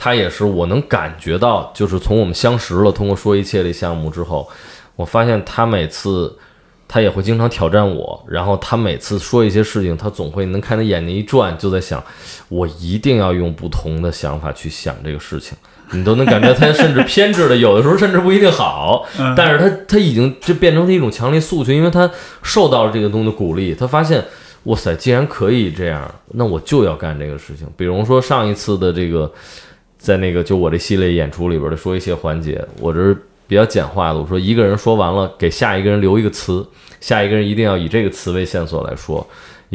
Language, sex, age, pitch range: Chinese, male, 20-39, 85-115 Hz